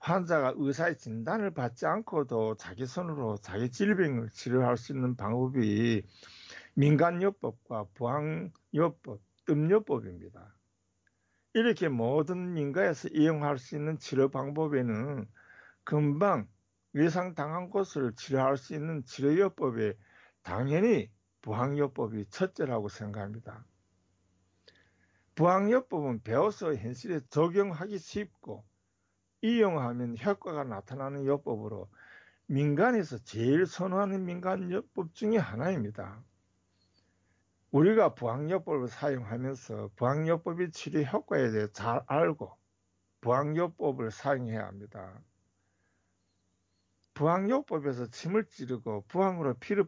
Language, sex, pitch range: Korean, male, 105-170 Hz